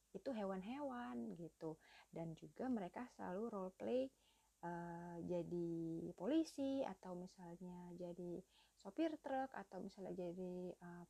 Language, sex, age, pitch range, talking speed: Indonesian, female, 30-49, 185-285 Hz, 115 wpm